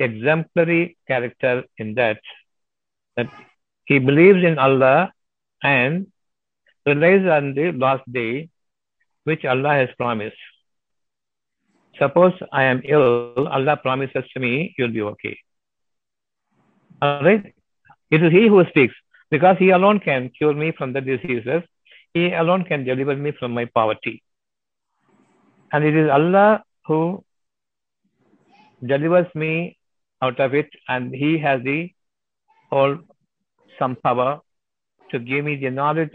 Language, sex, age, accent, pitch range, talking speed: Tamil, male, 60-79, native, 125-165 Hz, 125 wpm